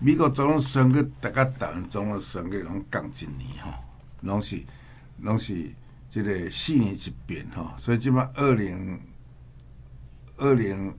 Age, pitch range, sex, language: 60-79, 95-120 Hz, male, Chinese